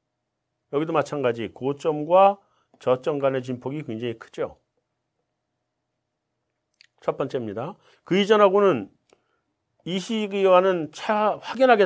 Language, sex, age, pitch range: Korean, male, 40-59, 150-230 Hz